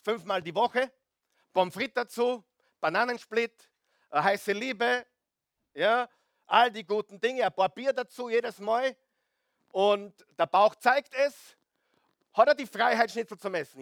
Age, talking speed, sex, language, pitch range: 50-69, 140 wpm, male, German, 155-240 Hz